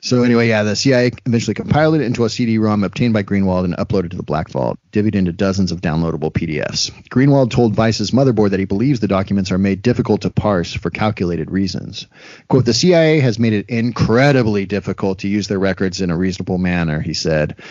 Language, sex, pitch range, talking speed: English, male, 95-120 Hz, 205 wpm